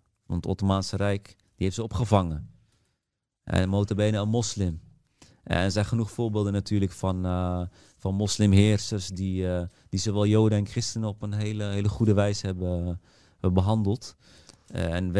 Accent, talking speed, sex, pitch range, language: Dutch, 160 wpm, male, 95-110 Hz, Dutch